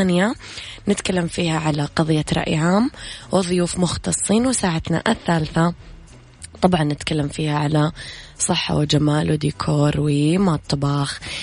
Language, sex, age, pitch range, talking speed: Arabic, female, 20-39, 150-180 Hz, 100 wpm